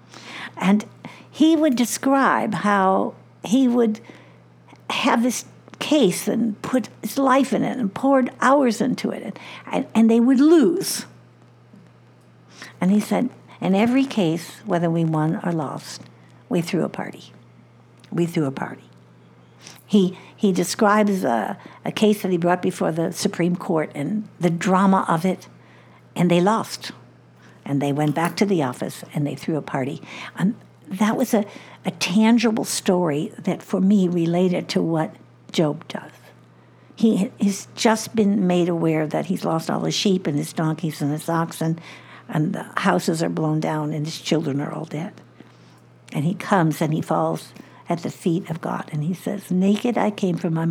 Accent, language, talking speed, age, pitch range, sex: American, English, 170 wpm, 60-79, 150-210 Hz, female